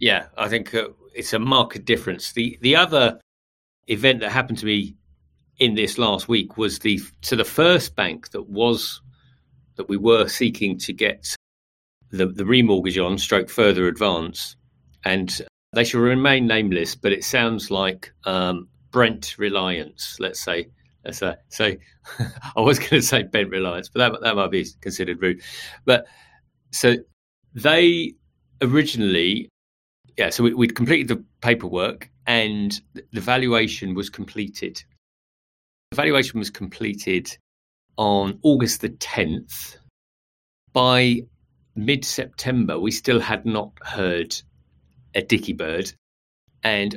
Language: English